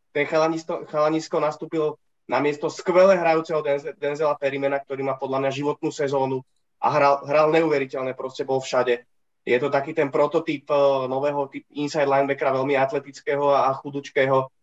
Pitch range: 140-160 Hz